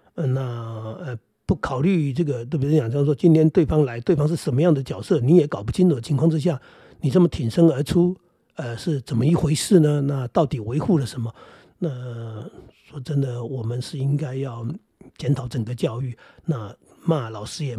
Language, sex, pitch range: Chinese, male, 125-165 Hz